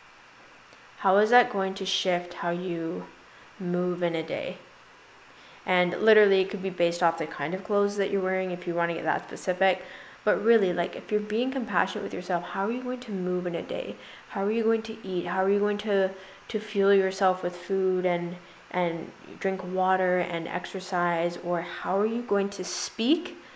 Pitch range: 175-200 Hz